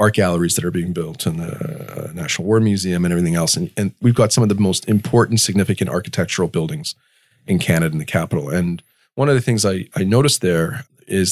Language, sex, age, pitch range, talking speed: English, male, 40-59, 85-115 Hz, 215 wpm